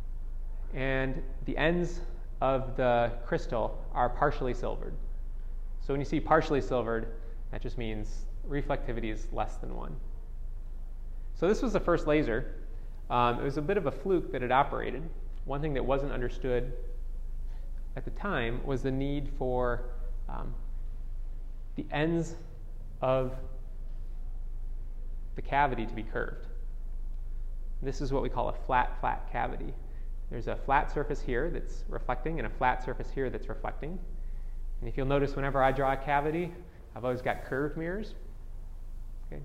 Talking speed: 150 wpm